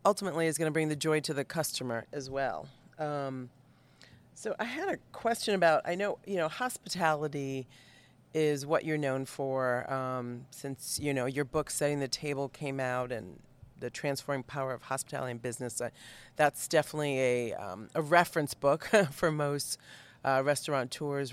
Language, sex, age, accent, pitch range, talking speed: English, female, 40-59, American, 130-155 Hz, 170 wpm